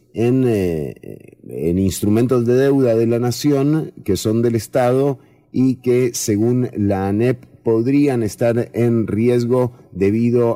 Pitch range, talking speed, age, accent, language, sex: 95-120 Hz, 130 wpm, 30-49, Argentinian, English, male